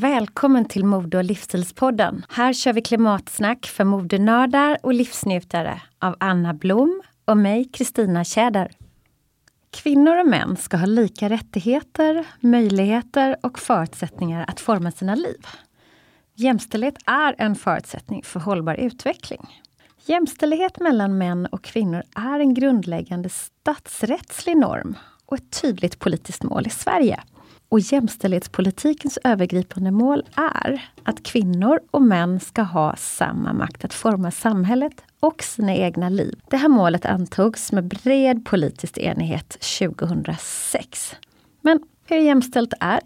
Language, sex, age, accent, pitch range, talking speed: Swedish, female, 30-49, native, 190-270 Hz, 125 wpm